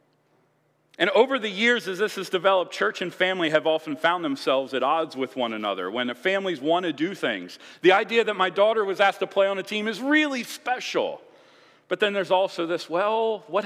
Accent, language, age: American, English, 40-59